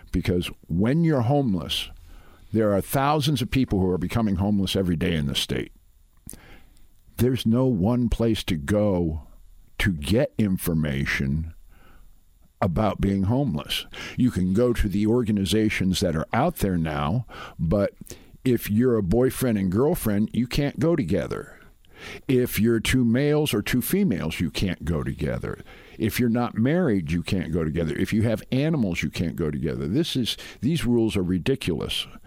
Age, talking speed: 50-69, 160 wpm